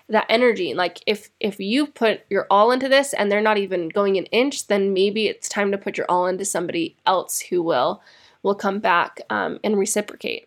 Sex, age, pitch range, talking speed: female, 10-29, 190-225 Hz, 210 wpm